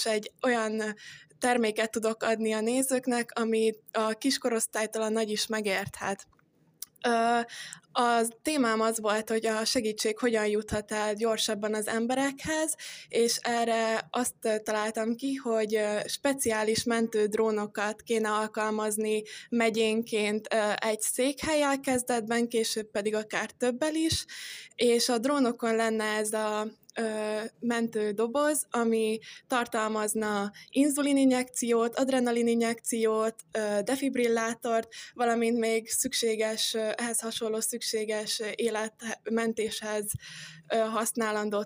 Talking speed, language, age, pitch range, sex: 100 wpm, Hungarian, 20-39, 215-235 Hz, female